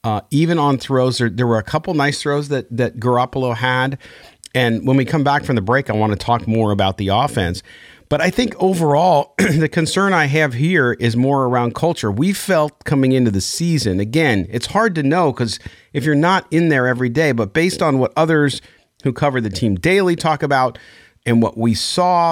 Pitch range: 115-155 Hz